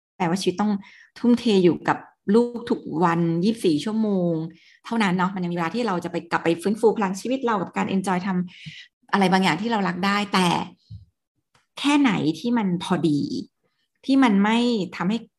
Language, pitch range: Thai, 175-230 Hz